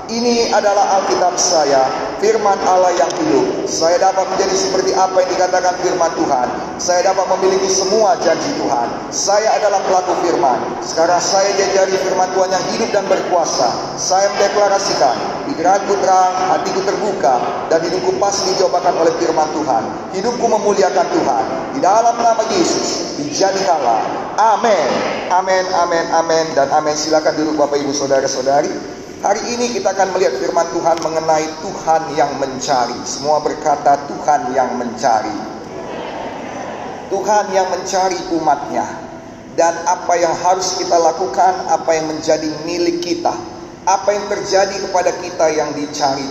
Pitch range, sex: 160-195 Hz, male